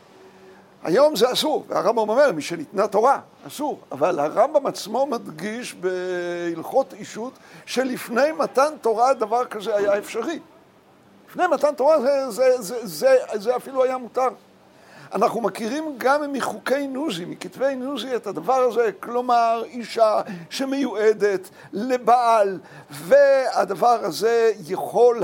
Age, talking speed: 60-79, 120 wpm